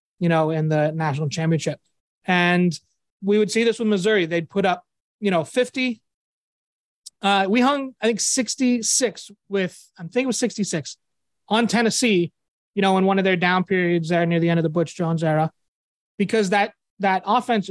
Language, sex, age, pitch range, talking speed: English, male, 30-49, 175-215 Hz, 185 wpm